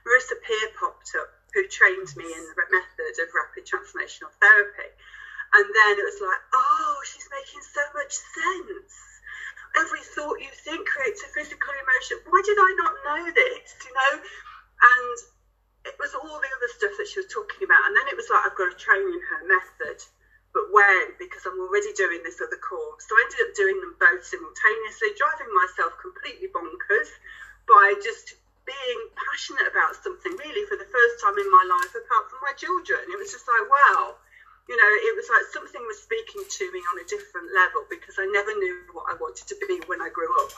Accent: British